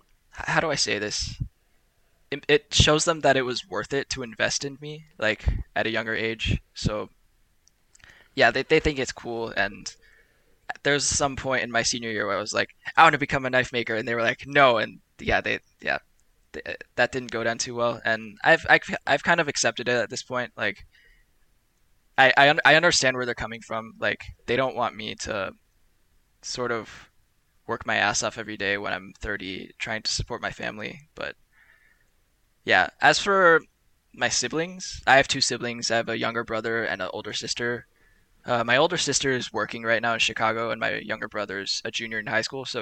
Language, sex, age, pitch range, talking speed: English, male, 10-29, 110-140 Hz, 205 wpm